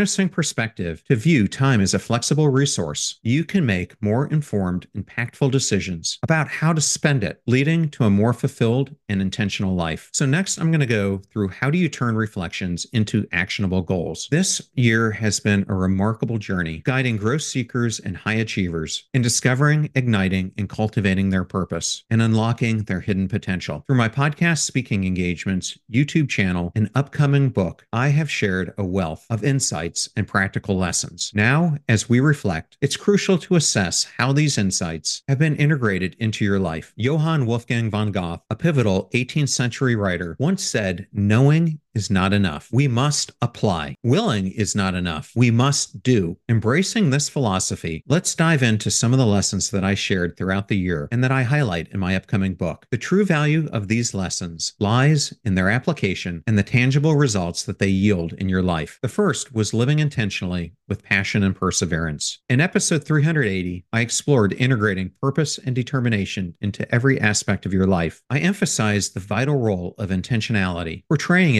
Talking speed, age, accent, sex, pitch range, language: 175 wpm, 40-59, American, male, 95-140 Hz, English